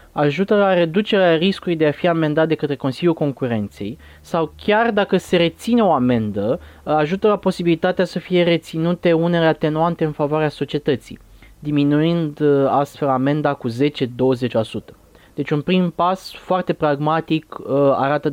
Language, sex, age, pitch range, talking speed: Romanian, male, 20-39, 140-175 Hz, 140 wpm